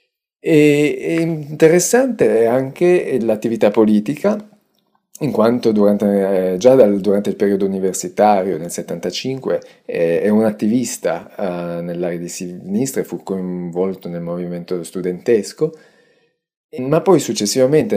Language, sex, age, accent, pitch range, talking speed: Italian, male, 30-49, native, 95-155 Hz, 105 wpm